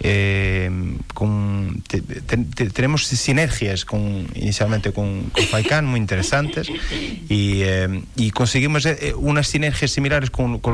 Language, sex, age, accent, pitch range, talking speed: Spanish, male, 30-49, Spanish, 100-125 Hz, 135 wpm